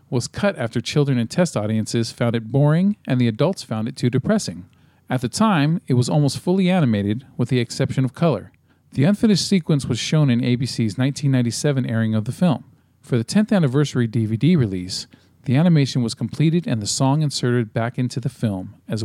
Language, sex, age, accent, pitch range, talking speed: English, male, 40-59, American, 110-145 Hz, 190 wpm